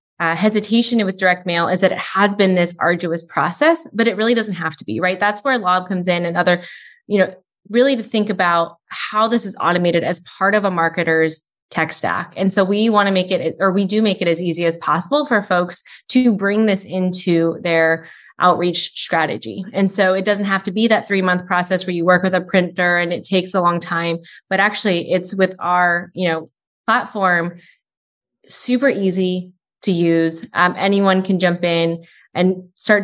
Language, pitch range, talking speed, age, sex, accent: English, 170-200 Hz, 205 wpm, 20-39, female, American